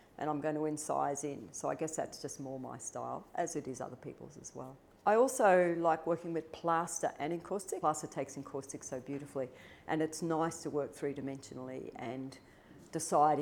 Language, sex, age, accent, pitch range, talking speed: English, female, 50-69, Australian, 145-195 Hz, 190 wpm